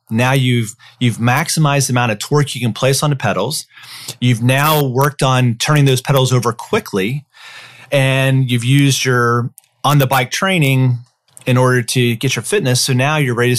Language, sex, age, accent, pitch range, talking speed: English, male, 30-49, American, 120-140 Hz, 185 wpm